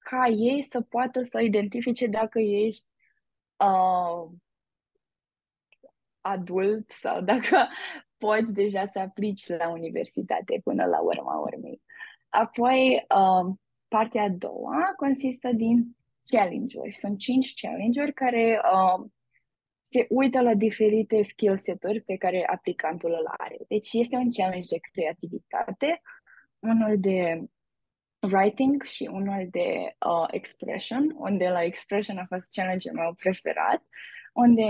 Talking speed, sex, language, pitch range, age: 120 wpm, female, Romanian, 190-255 Hz, 20-39